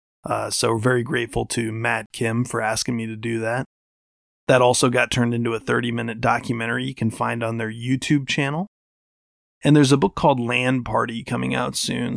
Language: English